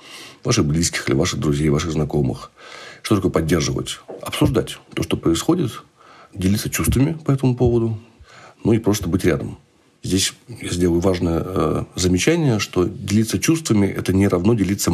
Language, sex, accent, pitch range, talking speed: Russian, male, native, 80-110 Hz, 145 wpm